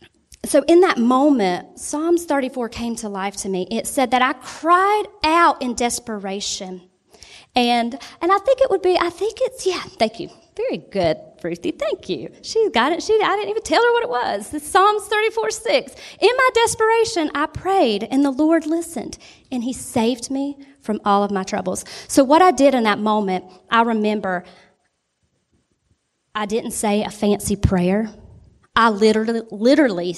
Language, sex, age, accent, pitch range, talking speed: English, female, 30-49, American, 215-330 Hz, 175 wpm